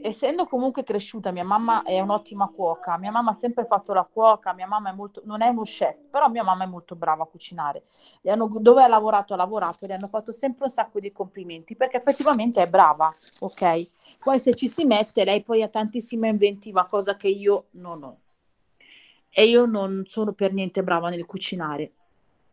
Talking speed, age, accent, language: 200 wpm, 40-59, native, Italian